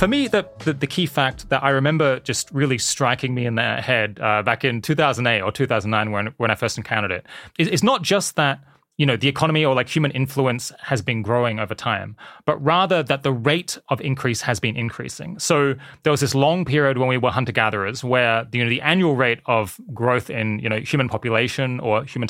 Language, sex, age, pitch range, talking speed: English, male, 20-39, 115-145 Hz, 225 wpm